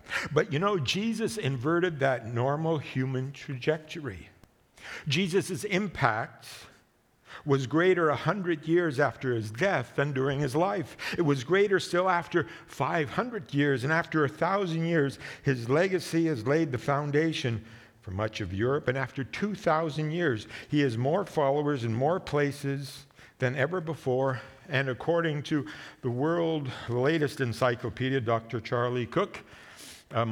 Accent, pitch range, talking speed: American, 130-160 Hz, 135 wpm